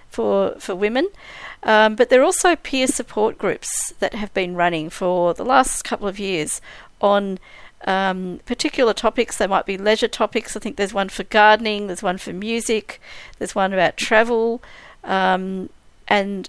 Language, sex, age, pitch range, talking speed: English, female, 50-69, 195-240 Hz, 165 wpm